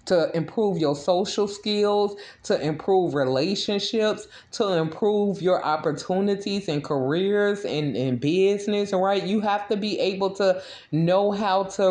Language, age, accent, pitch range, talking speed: English, 20-39, American, 150-185 Hz, 135 wpm